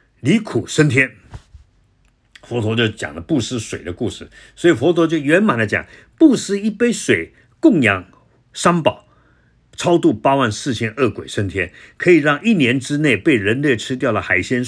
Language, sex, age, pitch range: Chinese, male, 50-69, 105-140 Hz